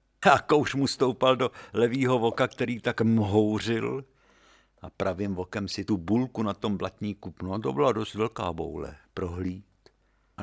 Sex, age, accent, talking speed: male, 60-79, native, 160 wpm